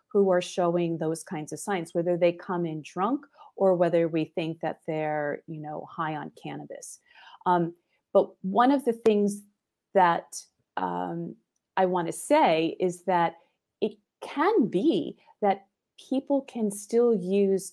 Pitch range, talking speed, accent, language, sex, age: 170-205 Hz, 150 wpm, American, English, female, 40-59